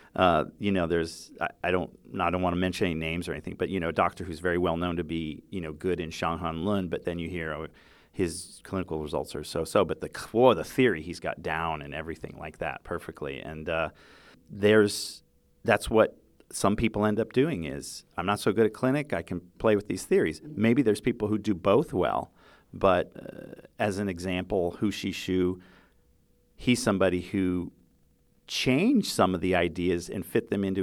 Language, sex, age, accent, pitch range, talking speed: English, male, 40-59, American, 85-105 Hz, 205 wpm